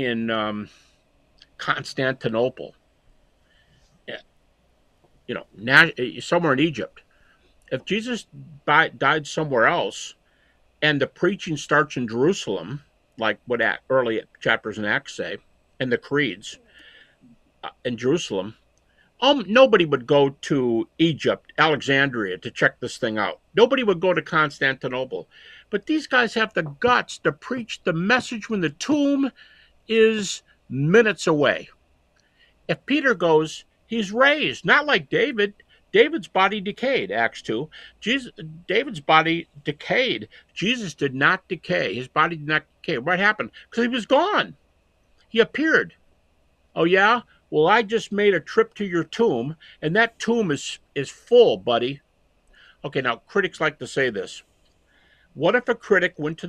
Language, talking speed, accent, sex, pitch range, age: English, 140 wpm, American, male, 150-230 Hz, 50-69